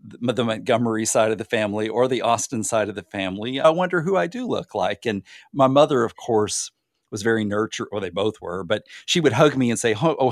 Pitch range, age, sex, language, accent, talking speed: 95-115 Hz, 50-69, male, English, American, 240 wpm